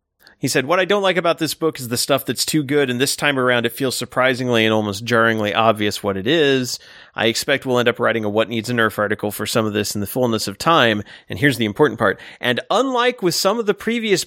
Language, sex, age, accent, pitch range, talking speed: English, male, 30-49, American, 115-160 Hz, 260 wpm